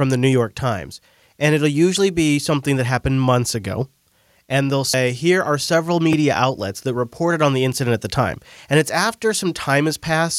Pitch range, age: 120-150 Hz, 30-49